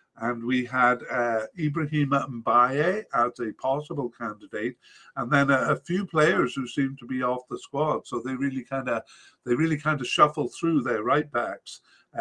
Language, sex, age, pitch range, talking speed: English, male, 50-69, 115-140 Hz, 180 wpm